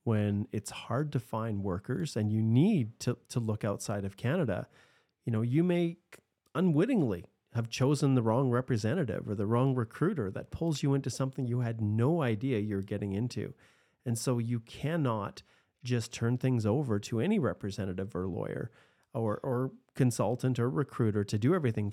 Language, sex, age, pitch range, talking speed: English, male, 30-49, 110-130 Hz, 170 wpm